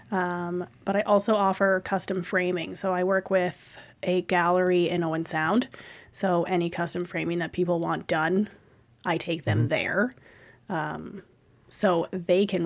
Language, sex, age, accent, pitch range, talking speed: English, female, 30-49, American, 180-230 Hz, 150 wpm